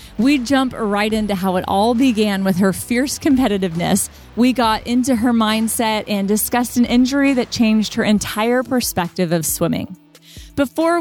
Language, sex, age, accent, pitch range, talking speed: English, female, 30-49, American, 195-245 Hz, 160 wpm